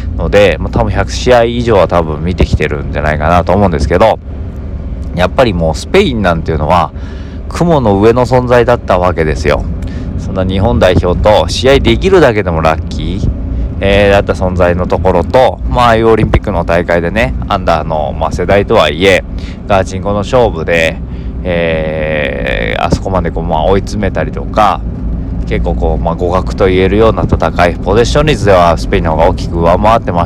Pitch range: 80-105 Hz